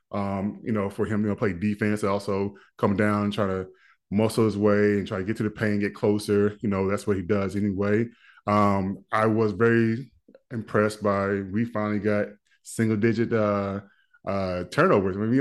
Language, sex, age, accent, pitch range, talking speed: English, male, 10-29, American, 105-125 Hz, 205 wpm